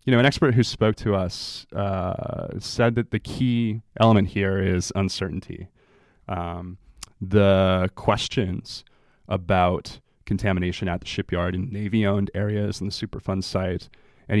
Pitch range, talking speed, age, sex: 95-115 Hz, 135 wpm, 20-39, male